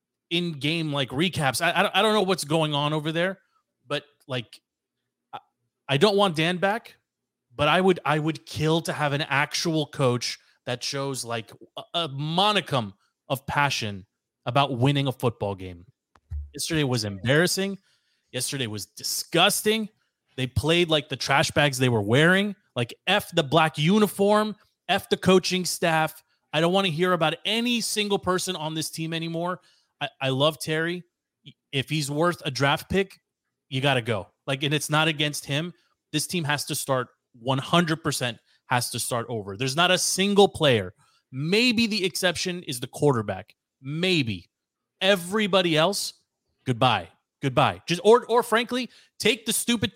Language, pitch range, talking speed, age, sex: English, 135-190 Hz, 160 wpm, 30-49, male